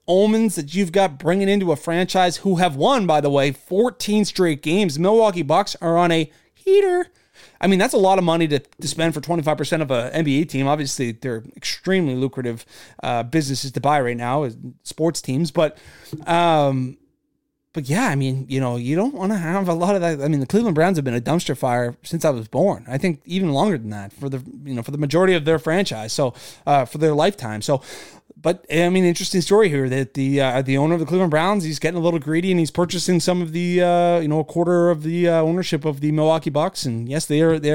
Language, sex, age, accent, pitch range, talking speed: English, male, 20-39, American, 135-175 Hz, 240 wpm